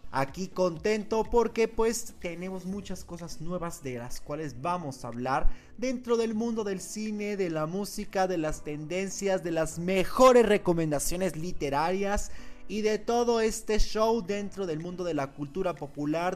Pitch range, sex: 150-195 Hz, male